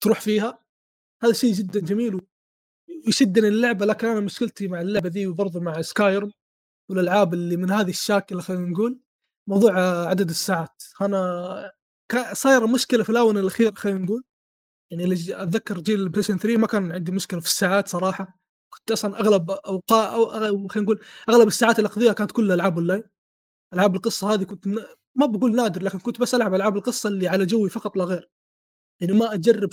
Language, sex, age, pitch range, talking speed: Arabic, male, 20-39, 190-230 Hz, 170 wpm